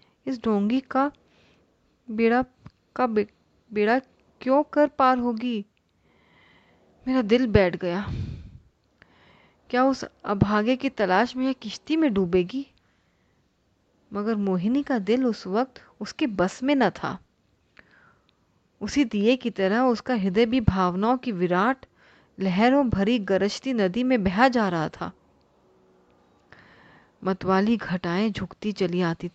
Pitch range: 180-235 Hz